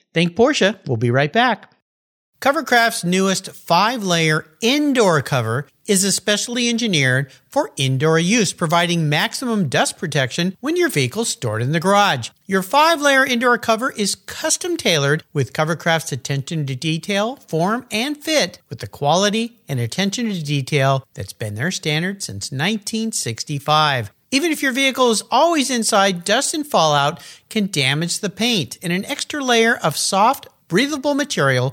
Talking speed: 140 wpm